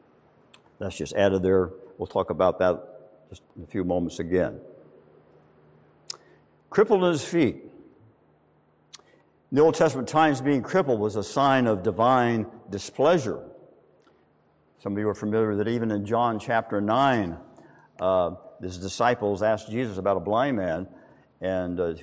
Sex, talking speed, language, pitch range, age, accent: male, 140 wpm, English, 90-145 Hz, 60-79, American